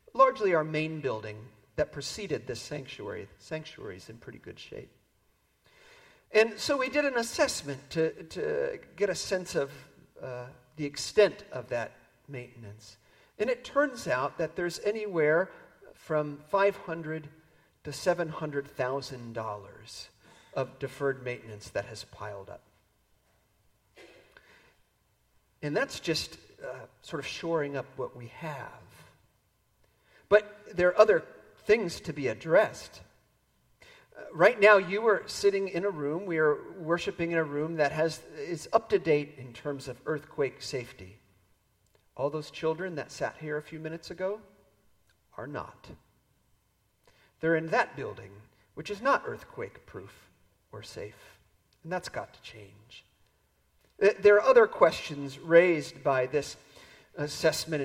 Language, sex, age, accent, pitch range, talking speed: English, male, 50-69, American, 130-195 Hz, 135 wpm